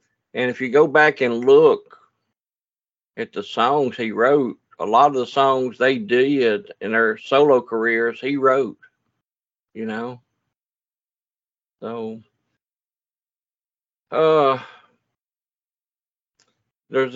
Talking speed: 105 wpm